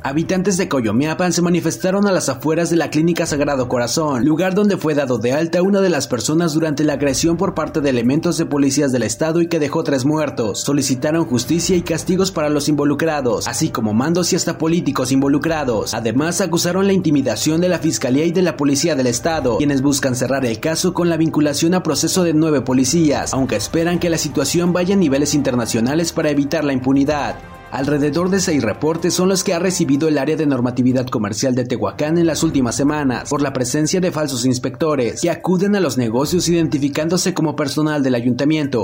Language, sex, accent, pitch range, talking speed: Spanish, male, Mexican, 135-170 Hz, 200 wpm